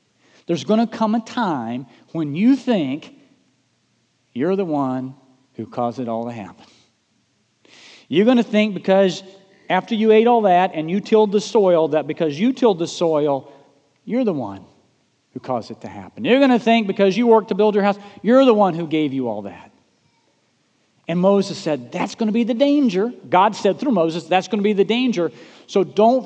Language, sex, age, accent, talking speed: English, male, 40-59, American, 200 wpm